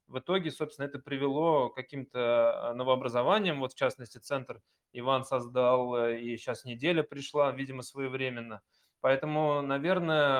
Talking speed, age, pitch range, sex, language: 125 wpm, 20-39, 130-155 Hz, male, Russian